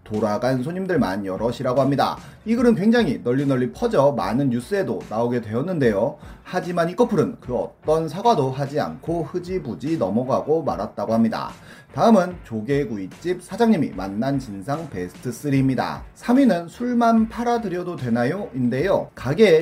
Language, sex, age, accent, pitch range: Korean, male, 30-49, native, 120-195 Hz